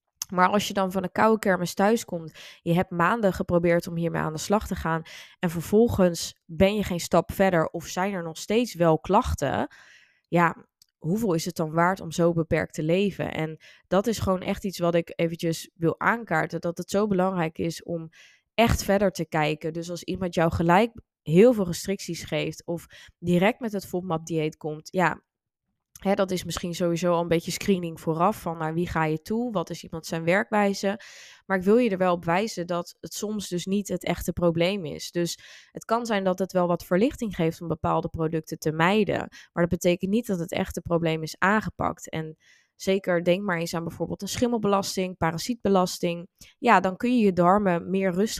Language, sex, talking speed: Dutch, female, 200 wpm